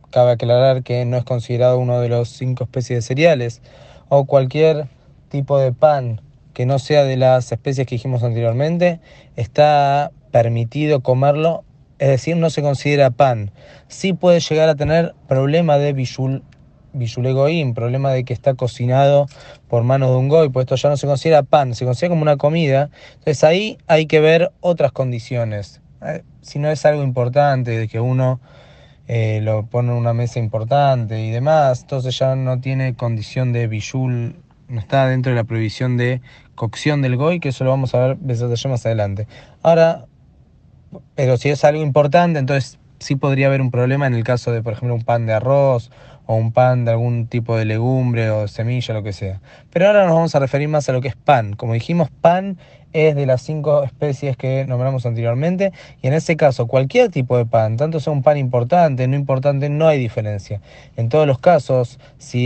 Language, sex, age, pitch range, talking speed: Spanish, male, 20-39, 120-145 Hz, 190 wpm